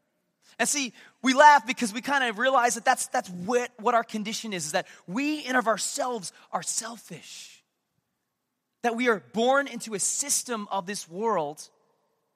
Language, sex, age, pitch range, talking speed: English, male, 30-49, 205-255 Hz, 170 wpm